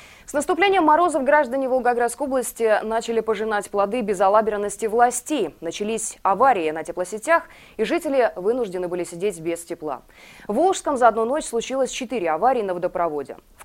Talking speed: 145 wpm